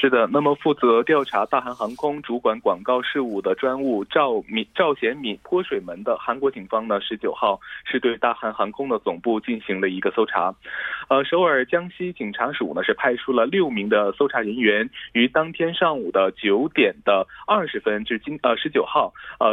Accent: Chinese